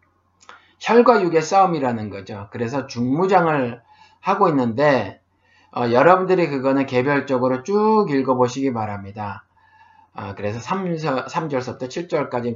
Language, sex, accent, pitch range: Korean, male, native, 125-185 Hz